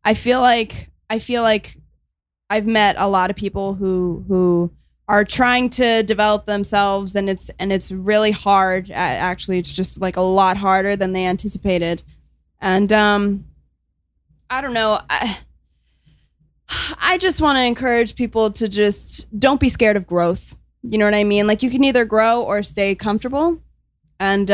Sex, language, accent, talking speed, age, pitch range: female, English, American, 165 wpm, 20-39, 185-245 Hz